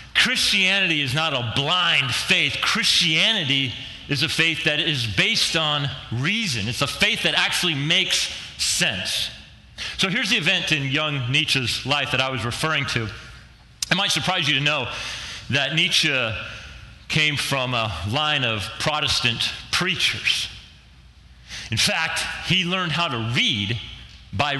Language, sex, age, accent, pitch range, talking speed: English, male, 40-59, American, 120-160 Hz, 140 wpm